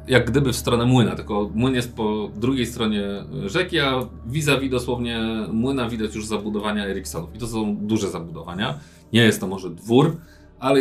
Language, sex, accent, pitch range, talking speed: Polish, male, native, 90-115 Hz, 170 wpm